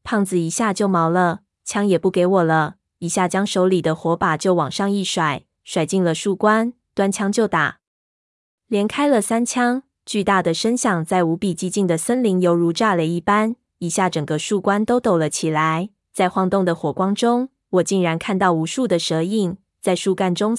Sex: female